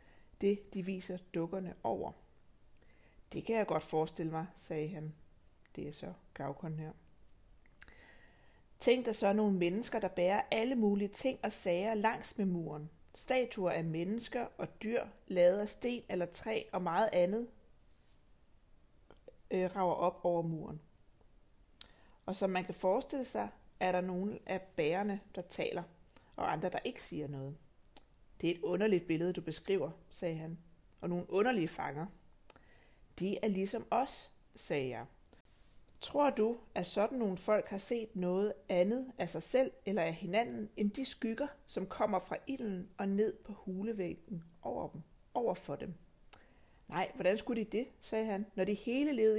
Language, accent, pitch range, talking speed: Danish, native, 175-225 Hz, 160 wpm